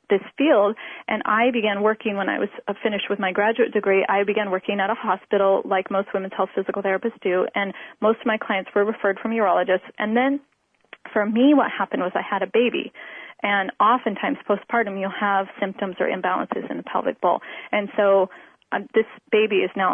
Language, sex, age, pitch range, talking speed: English, female, 30-49, 195-230 Hz, 195 wpm